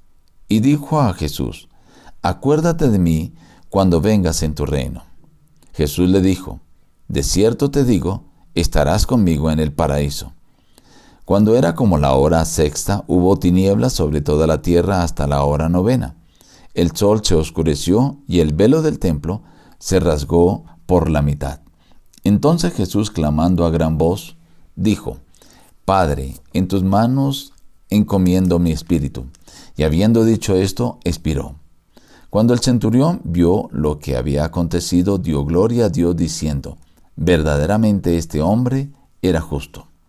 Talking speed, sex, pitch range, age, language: 135 wpm, male, 80-105 Hz, 50-69, Spanish